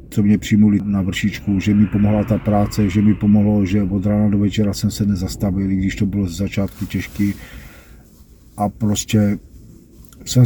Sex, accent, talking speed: male, native, 170 wpm